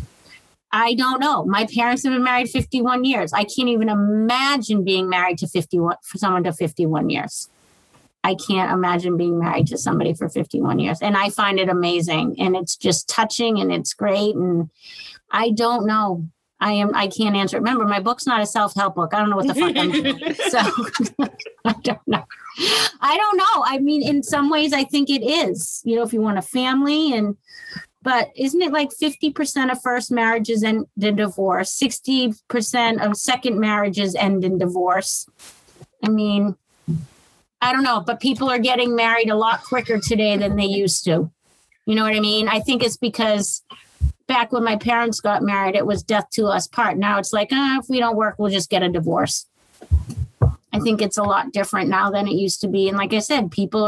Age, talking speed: 30-49, 200 wpm